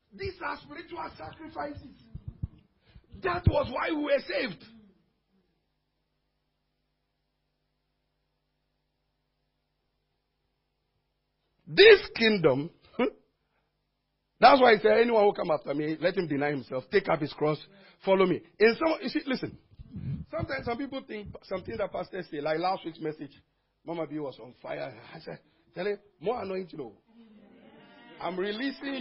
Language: English